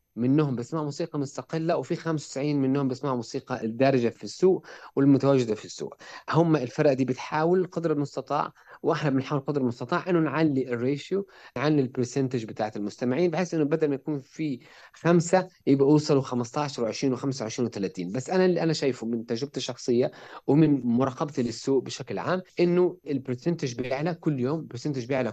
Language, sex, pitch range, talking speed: Arabic, male, 125-160 Hz, 155 wpm